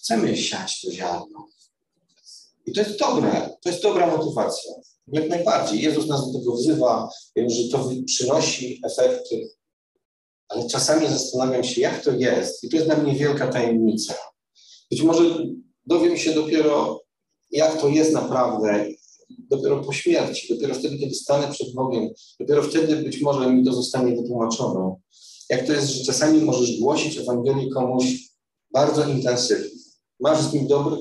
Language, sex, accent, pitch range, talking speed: Polish, male, native, 125-170 Hz, 155 wpm